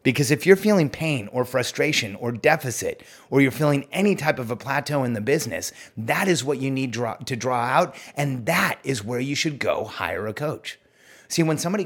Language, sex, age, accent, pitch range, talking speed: English, male, 30-49, American, 125-160 Hz, 205 wpm